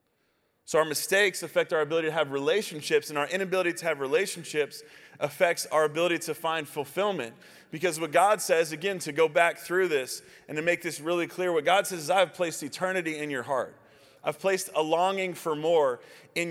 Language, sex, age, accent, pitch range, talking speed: English, male, 20-39, American, 155-190 Hz, 195 wpm